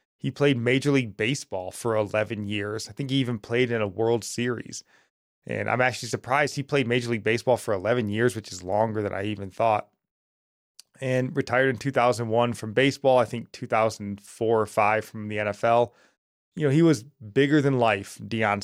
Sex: male